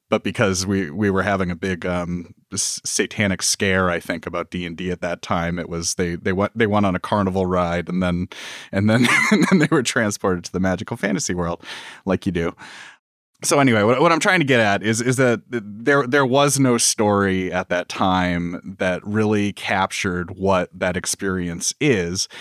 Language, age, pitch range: English, 30-49, 90-110 Hz